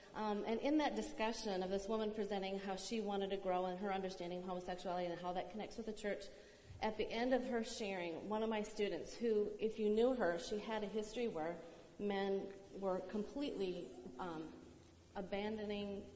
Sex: female